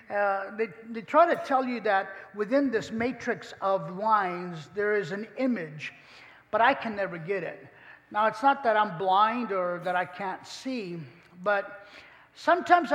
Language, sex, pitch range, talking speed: English, male, 200-275 Hz, 165 wpm